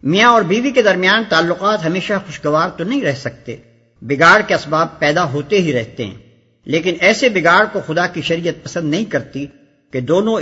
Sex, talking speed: male, 185 wpm